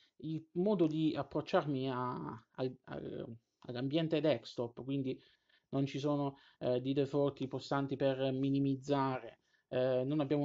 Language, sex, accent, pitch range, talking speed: Italian, male, native, 130-150 Hz, 130 wpm